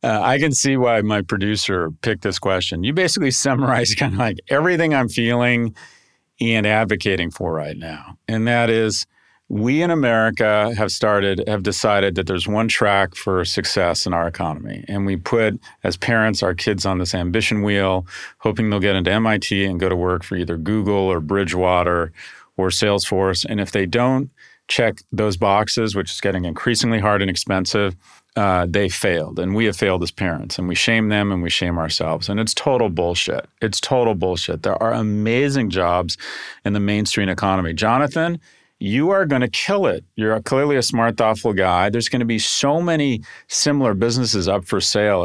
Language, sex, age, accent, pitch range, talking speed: English, male, 40-59, American, 95-115 Hz, 185 wpm